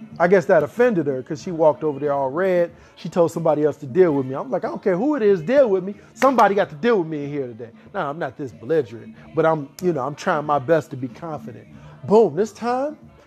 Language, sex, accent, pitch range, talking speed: English, male, American, 145-200 Hz, 265 wpm